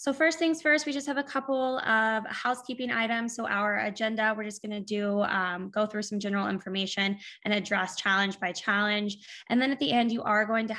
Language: English